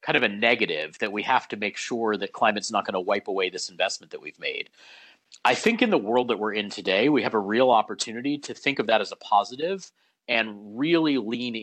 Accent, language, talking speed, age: American, English, 235 wpm, 40-59